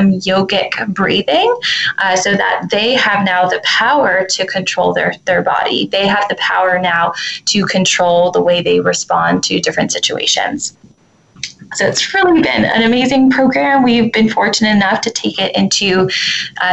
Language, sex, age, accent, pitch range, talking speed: English, female, 20-39, American, 185-220 Hz, 160 wpm